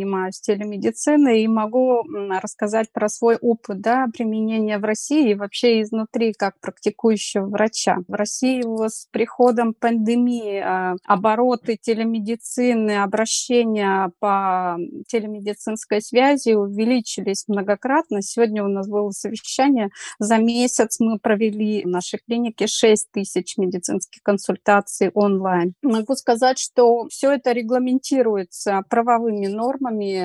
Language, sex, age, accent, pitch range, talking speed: Russian, female, 30-49, native, 205-240 Hz, 115 wpm